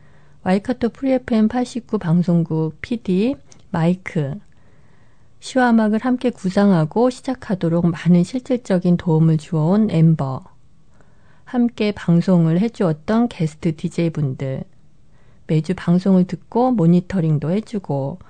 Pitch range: 160-210 Hz